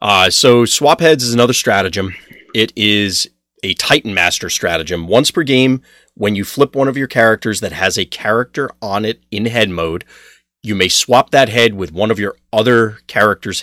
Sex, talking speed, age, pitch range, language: male, 190 wpm, 30-49, 85-120 Hz, English